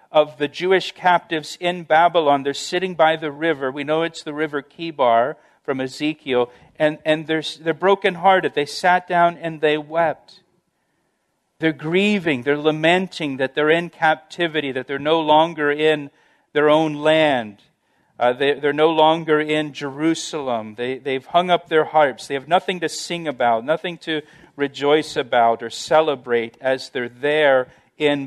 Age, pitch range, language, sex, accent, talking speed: 50-69, 135-165 Hz, English, male, American, 160 wpm